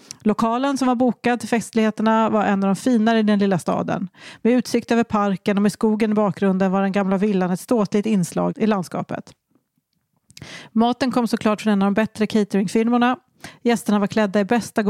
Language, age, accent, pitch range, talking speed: English, 40-59, Swedish, 195-235 Hz, 190 wpm